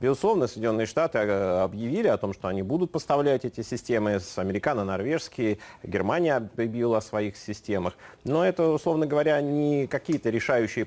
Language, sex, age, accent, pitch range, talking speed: Russian, male, 30-49, native, 100-135 Hz, 145 wpm